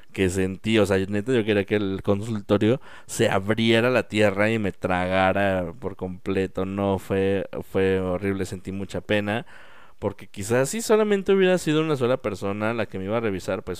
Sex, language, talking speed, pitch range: male, Spanish, 185 wpm, 100-140 Hz